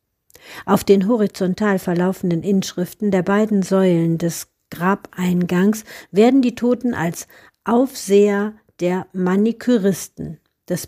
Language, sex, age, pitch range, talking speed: German, female, 50-69, 175-220 Hz, 100 wpm